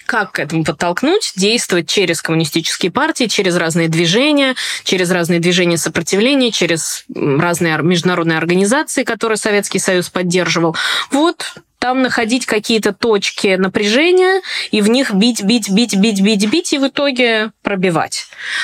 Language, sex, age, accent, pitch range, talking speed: Russian, female, 20-39, native, 165-215 Hz, 135 wpm